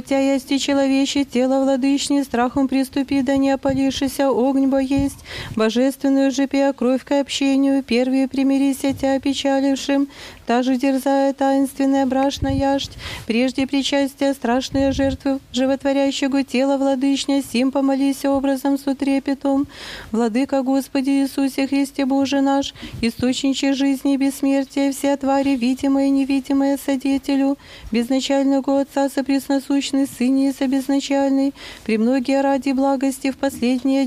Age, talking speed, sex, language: 30-49, 120 wpm, female, Polish